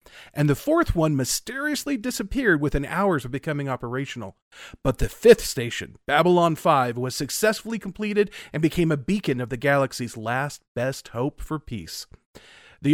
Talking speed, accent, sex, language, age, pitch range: 155 wpm, American, male, English, 40-59, 130-175 Hz